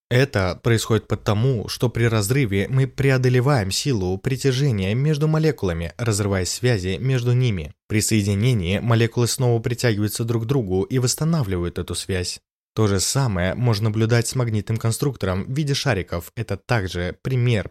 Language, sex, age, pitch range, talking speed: Russian, male, 20-39, 100-130 Hz, 140 wpm